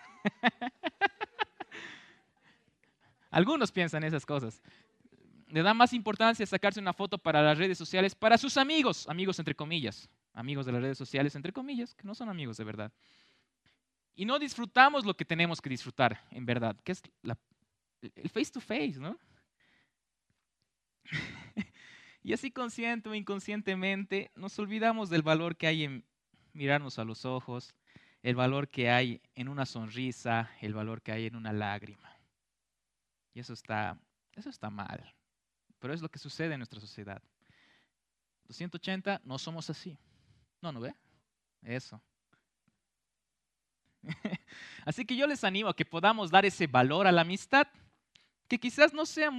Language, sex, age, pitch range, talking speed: Spanish, male, 20-39, 125-205 Hz, 150 wpm